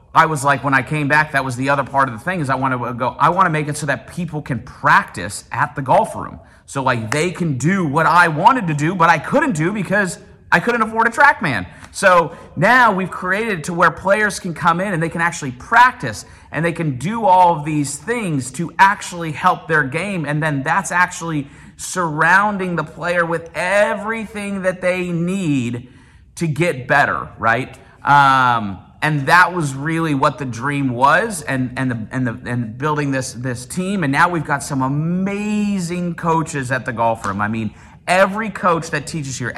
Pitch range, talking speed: 140-175 Hz, 205 wpm